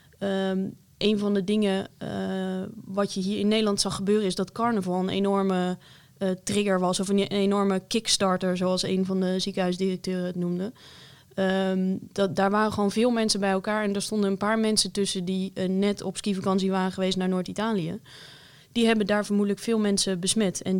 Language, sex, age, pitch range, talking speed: English, female, 20-39, 185-205 Hz, 190 wpm